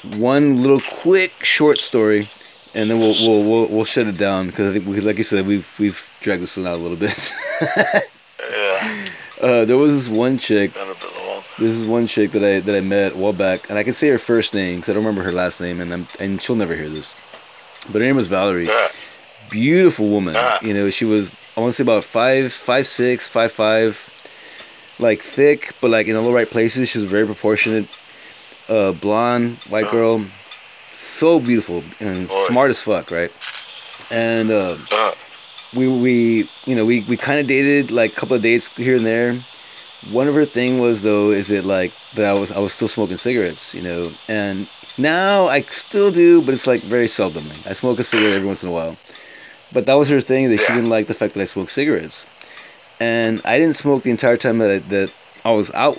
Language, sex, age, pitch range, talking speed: English, male, 20-39, 100-125 Hz, 215 wpm